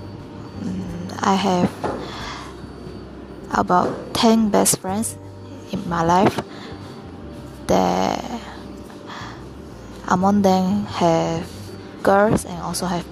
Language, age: English, 20-39